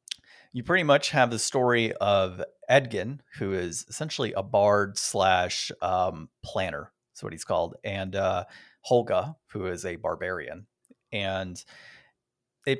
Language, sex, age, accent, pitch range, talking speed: English, male, 30-49, American, 100-125 Hz, 135 wpm